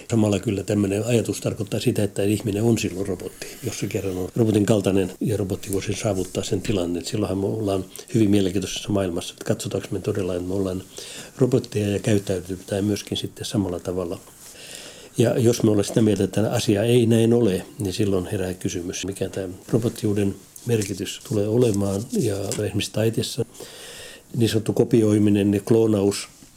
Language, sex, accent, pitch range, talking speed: Finnish, male, native, 100-115 Hz, 165 wpm